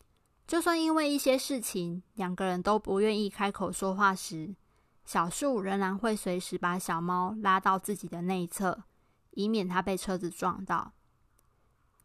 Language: Chinese